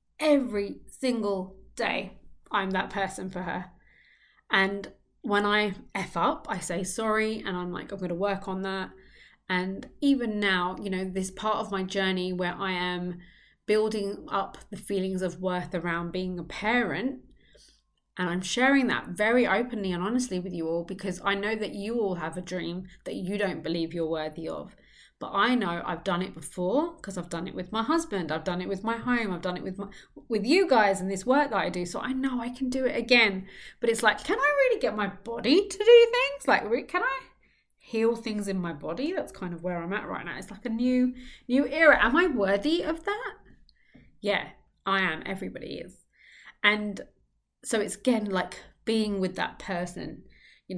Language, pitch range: English, 185-240 Hz